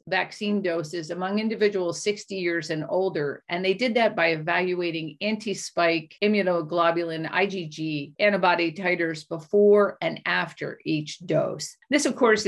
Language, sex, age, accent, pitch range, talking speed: English, female, 50-69, American, 160-195 Hz, 135 wpm